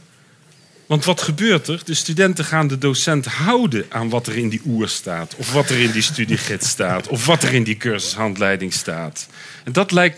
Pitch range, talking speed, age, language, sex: 115-155 Hz, 200 wpm, 40-59, Dutch, male